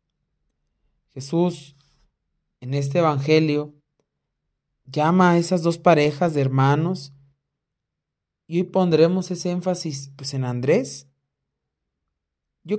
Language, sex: Spanish, male